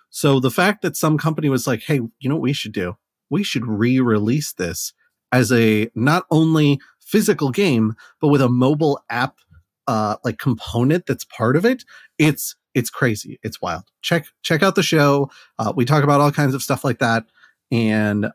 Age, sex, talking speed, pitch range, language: 30-49, male, 190 wpm, 110-150 Hz, English